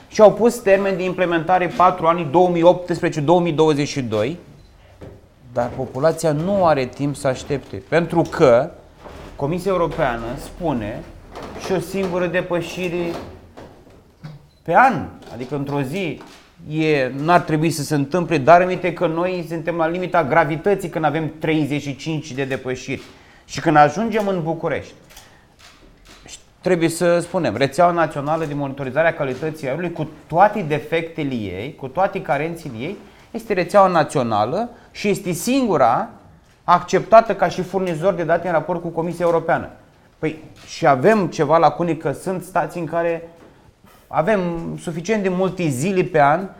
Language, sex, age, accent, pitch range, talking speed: Romanian, male, 30-49, native, 145-180 Hz, 135 wpm